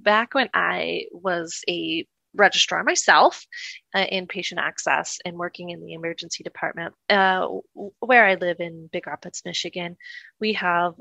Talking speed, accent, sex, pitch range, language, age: 145 wpm, American, female, 175-215 Hz, English, 20-39